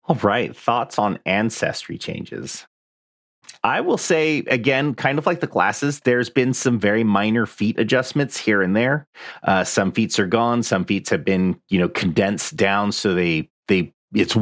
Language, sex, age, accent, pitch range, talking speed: English, male, 30-49, American, 100-140 Hz, 175 wpm